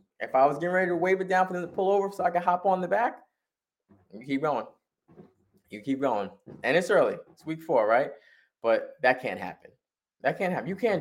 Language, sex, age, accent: English, male, 20-39, American